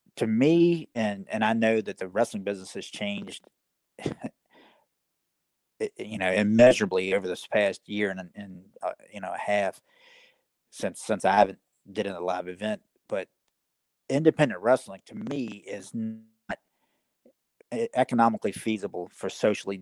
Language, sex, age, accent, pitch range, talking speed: English, male, 40-59, American, 100-130 Hz, 140 wpm